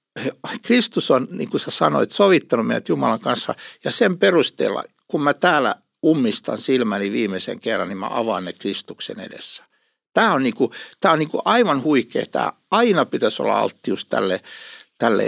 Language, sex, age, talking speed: Finnish, male, 60-79, 165 wpm